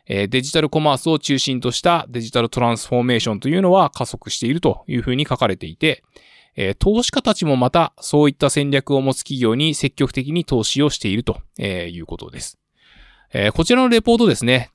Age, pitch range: 20-39, 110-150 Hz